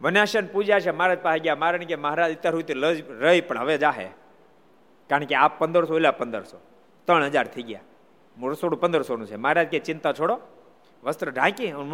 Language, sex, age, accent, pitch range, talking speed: Gujarati, male, 50-69, native, 150-215 Hz, 150 wpm